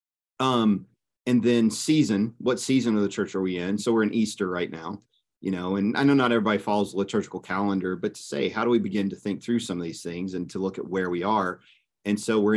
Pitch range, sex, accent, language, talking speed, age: 95-120 Hz, male, American, English, 255 wpm, 40-59